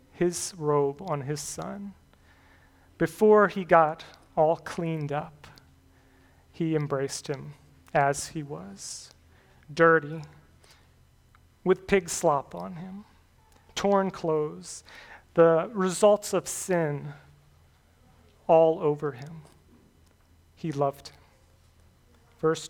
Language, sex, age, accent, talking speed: English, male, 40-59, American, 95 wpm